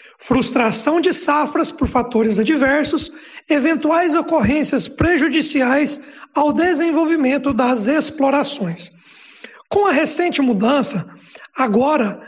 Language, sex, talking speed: Portuguese, male, 90 wpm